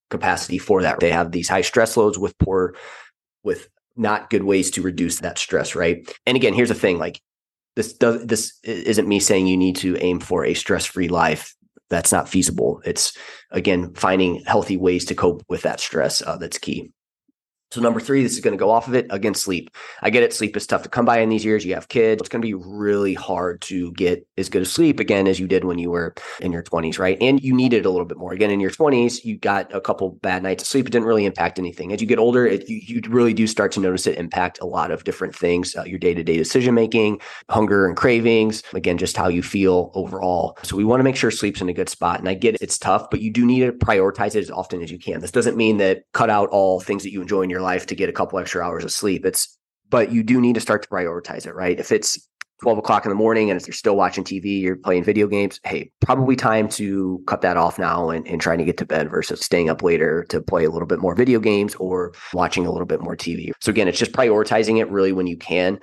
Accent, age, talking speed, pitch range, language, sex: American, 30-49, 260 wpm, 90-115 Hz, English, male